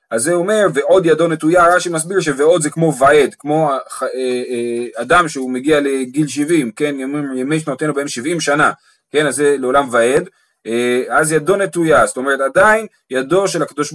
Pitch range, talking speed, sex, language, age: 140-185 Hz, 170 wpm, male, Hebrew, 30-49